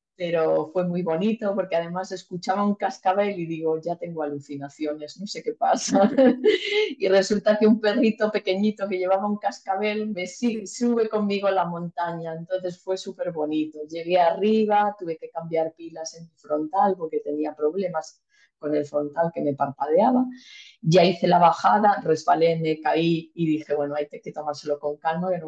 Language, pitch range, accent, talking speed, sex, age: Spanish, 155-200 Hz, Spanish, 170 wpm, female, 30-49